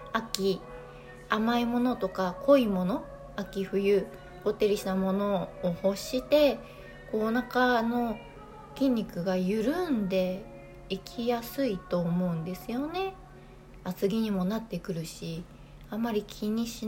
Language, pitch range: Japanese, 180-280 Hz